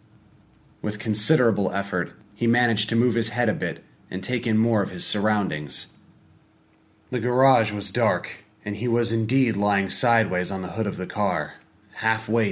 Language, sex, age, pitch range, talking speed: English, male, 30-49, 100-115 Hz, 170 wpm